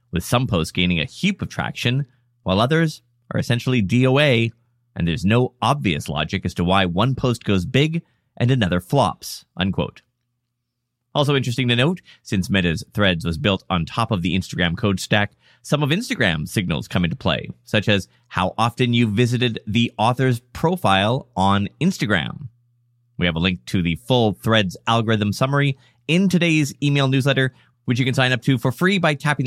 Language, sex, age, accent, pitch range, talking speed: English, male, 30-49, American, 100-135 Hz, 175 wpm